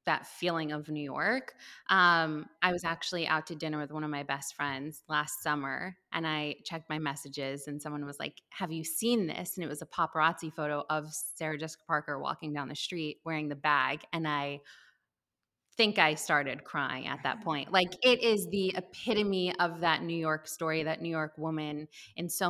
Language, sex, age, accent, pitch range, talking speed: English, female, 20-39, American, 150-180 Hz, 200 wpm